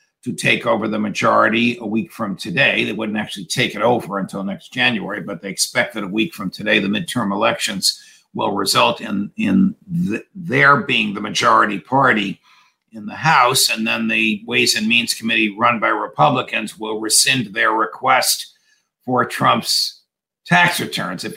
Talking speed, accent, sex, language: 170 wpm, American, male, English